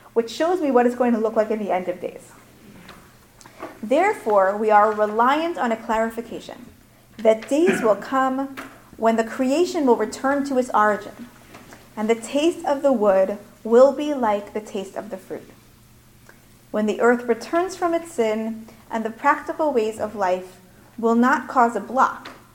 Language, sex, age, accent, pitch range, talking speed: English, female, 30-49, American, 215-275 Hz, 175 wpm